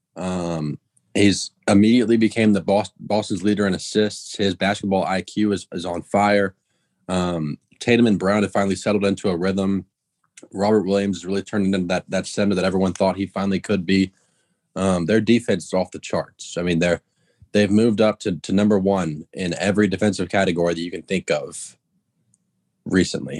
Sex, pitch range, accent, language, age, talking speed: male, 90-105 Hz, American, English, 20-39, 180 wpm